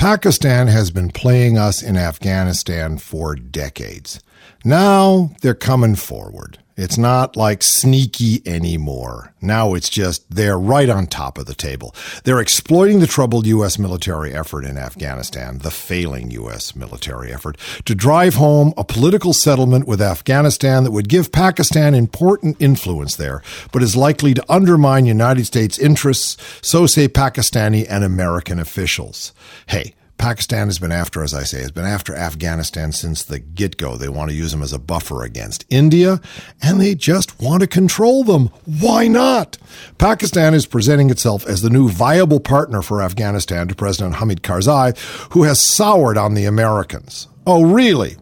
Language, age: English, 50-69